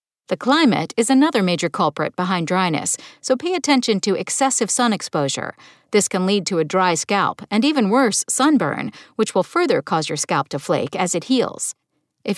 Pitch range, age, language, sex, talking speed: 185-260 Hz, 50-69, English, female, 185 wpm